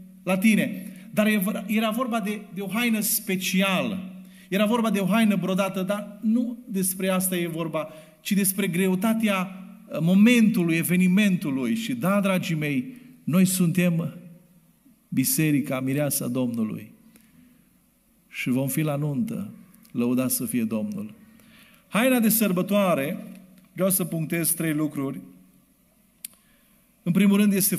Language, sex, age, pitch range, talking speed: Romanian, male, 40-59, 165-215 Hz, 125 wpm